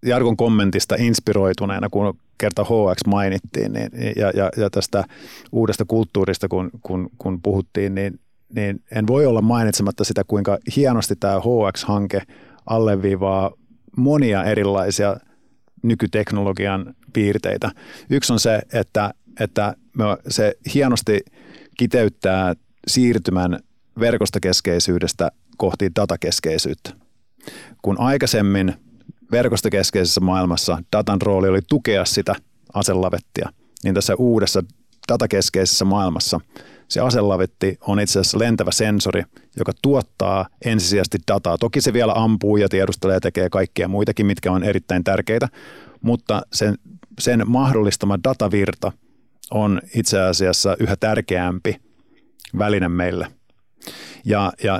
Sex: male